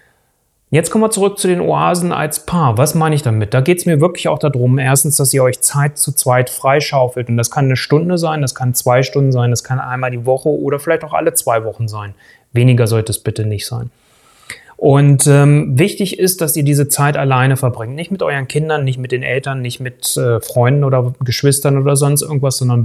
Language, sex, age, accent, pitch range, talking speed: German, male, 30-49, German, 130-155 Hz, 225 wpm